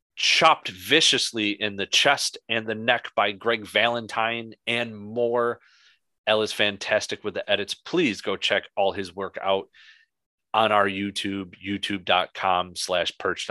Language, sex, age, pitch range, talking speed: English, male, 30-49, 100-115 Hz, 140 wpm